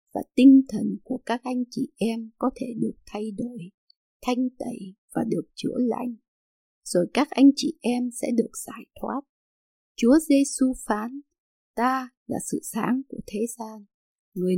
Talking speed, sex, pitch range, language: 160 wpm, female, 225-265 Hz, Vietnamese